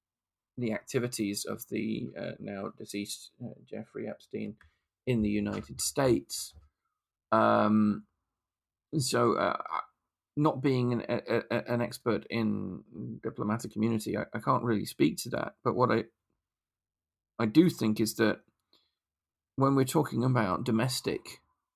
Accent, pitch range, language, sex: British, 105-120 Hz, English, male